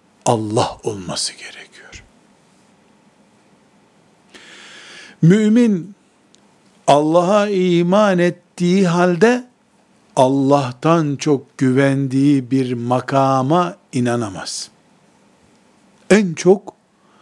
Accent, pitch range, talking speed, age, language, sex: native, 135-185 Hz, 55 wpm, 60-79, Turkish, male